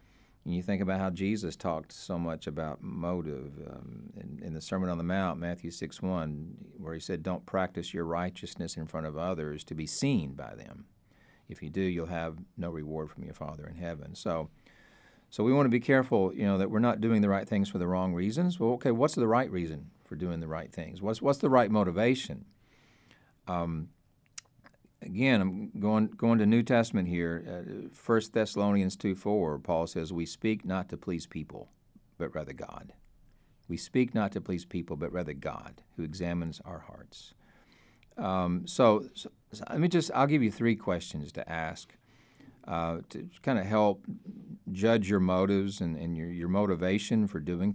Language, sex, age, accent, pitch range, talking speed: English, male, 50-69, American, 85-110 Hz, 190 wpm